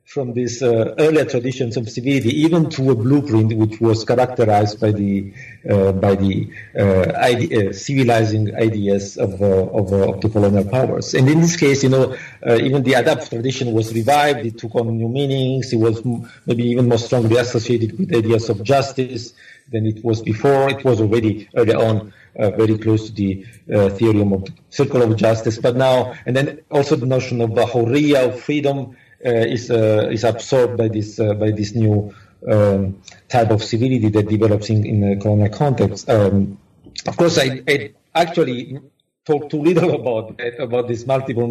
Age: 50-69